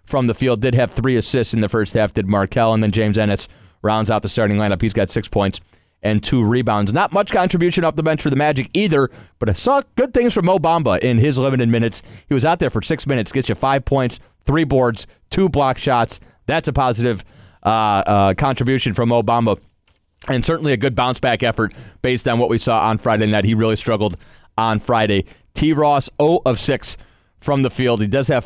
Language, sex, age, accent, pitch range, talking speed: English, male, 30-49, American, 105-140 Hz, 225 wpm